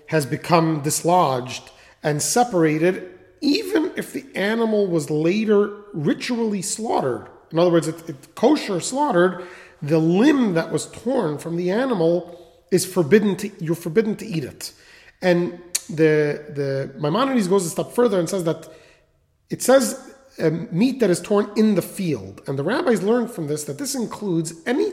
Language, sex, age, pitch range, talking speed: English, male, 30-49, 160-205 Hz, 160 wpm